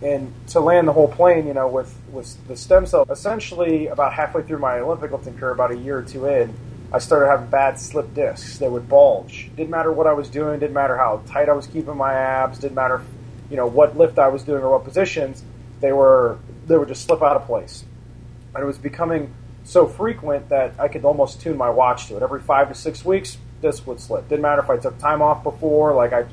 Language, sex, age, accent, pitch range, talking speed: English, male, 30-49, American, 120-150 Hz, 240 wpm